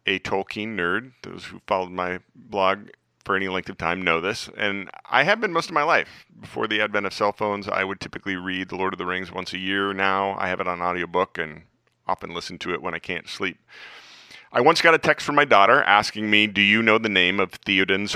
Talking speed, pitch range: 240 wpm, 95-115 Hz